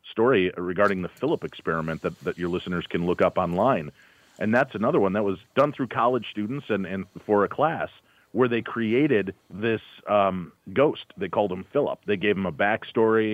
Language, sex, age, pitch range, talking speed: English, male, 40-59, 95-120 Hz, 195 wpm